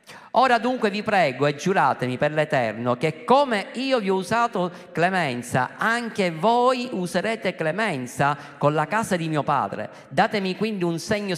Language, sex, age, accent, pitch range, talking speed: Italian, male, 50-69, native, 145-205 Hz, 155 wpm